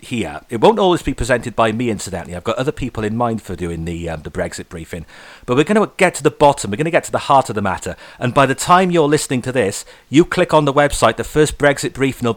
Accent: British